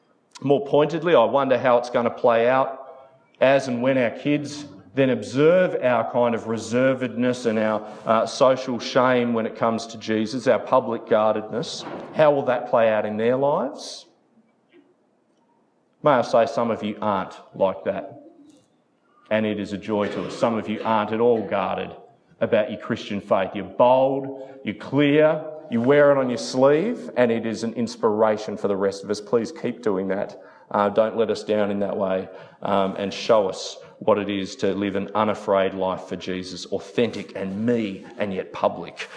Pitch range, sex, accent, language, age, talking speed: 105-140 Hz, male, Australian, English, 40-59, 185 wpm